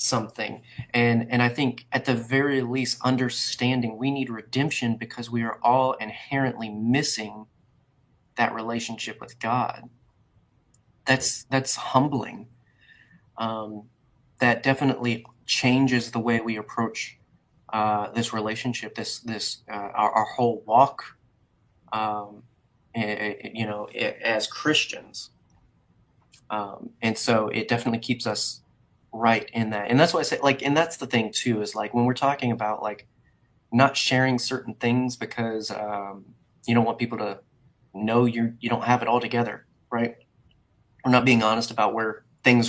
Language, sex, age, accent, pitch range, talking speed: English, male, 30-49, American, 110-130 Hz, 150 wpm